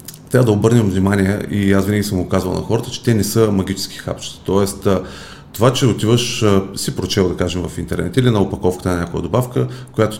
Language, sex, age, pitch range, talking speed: Bulgarian, male, 40-59, 95-115 Hz, 205 wpm